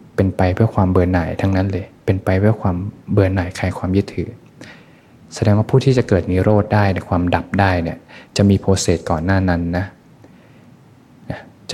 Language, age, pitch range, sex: Thai, 20-39, 85-100 Hz, male